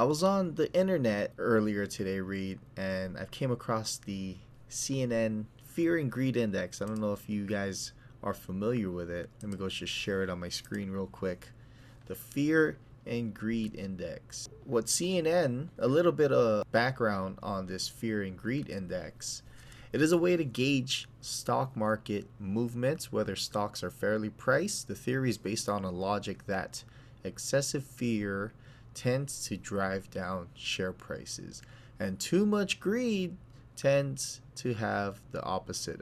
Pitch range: 100-130 Hz